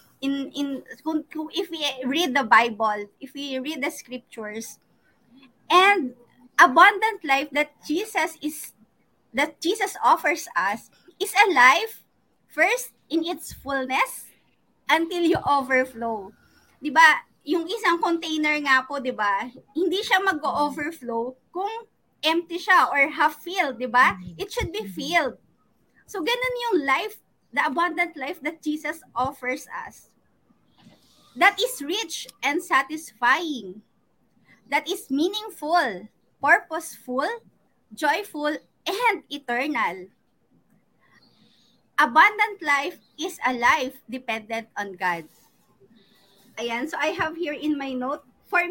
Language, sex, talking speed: English, female, 120 wpm